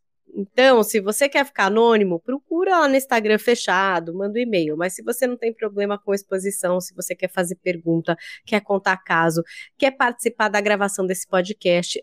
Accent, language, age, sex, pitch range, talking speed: Brazilian, Portuguese, 20-39, female, 190-250 Hz, 180 wpm